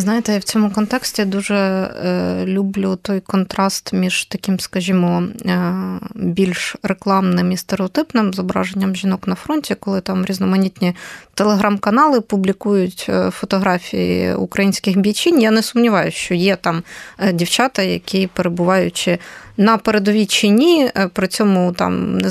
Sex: female